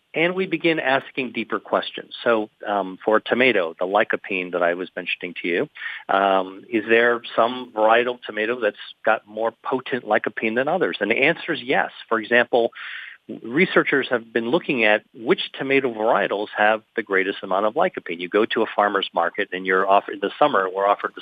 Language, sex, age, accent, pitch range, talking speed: English, male, 40-59, American, 100-125 Hz, 185 wpm